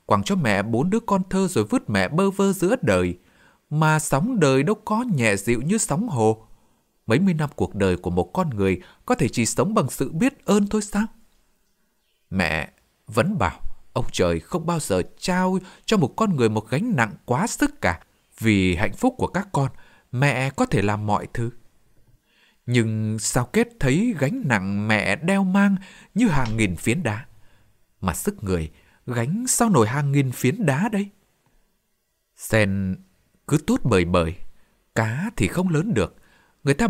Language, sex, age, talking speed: Vietnamese, male, 20-39, 180 wpm